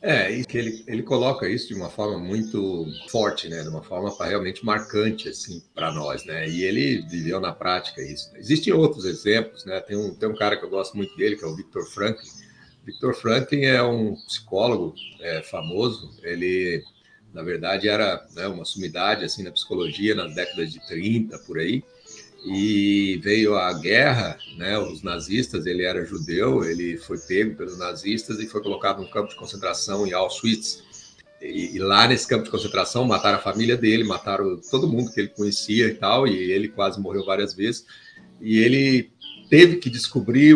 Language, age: Portuguese, 50-69